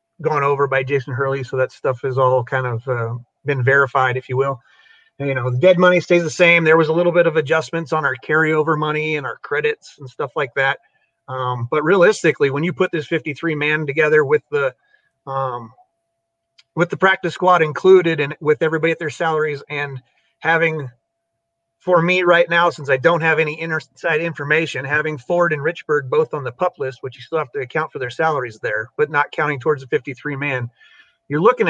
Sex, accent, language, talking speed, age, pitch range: male, American, English, 210 wpm, 30-49, 135-180 Hz